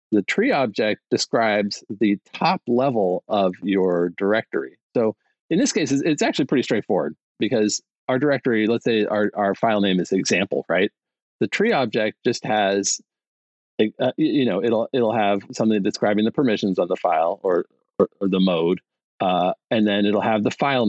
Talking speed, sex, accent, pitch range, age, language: 170 wpm, male, American, 100-140 Hz, 40-59, English